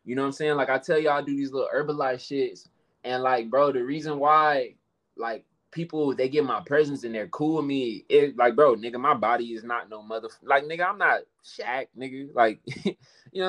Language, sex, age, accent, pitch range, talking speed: English, male, 20-39, American, 125-160 Hz, 225 wpm